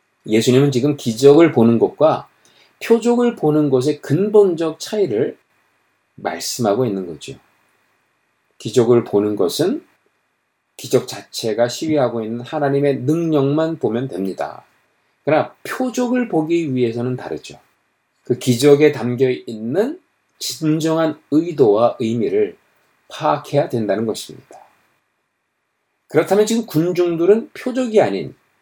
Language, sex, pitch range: Korean, male, 120-200 Hz